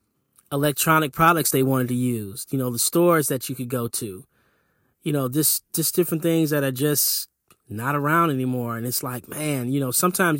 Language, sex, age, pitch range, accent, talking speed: English, male, 20-39, 130-150 Hz, American, 195 wpm